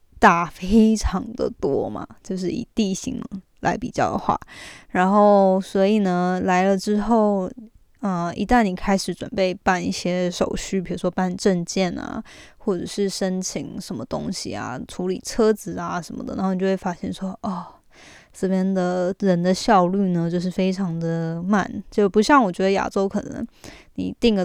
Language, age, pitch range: Chinese, 20-39, 185-215 Hz